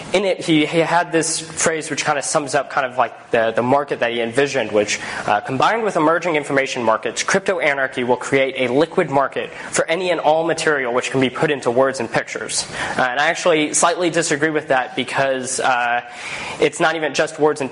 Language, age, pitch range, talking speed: English, 20-39, 130-155 Hz, 215 wpm